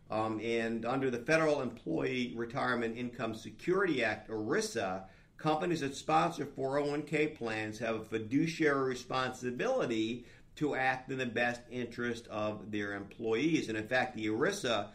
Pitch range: 110-135 Hz